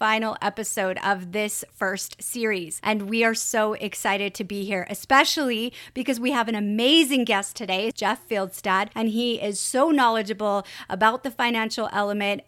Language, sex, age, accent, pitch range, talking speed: English, female, 30-49, American, 215-275 Hz, 160 wpm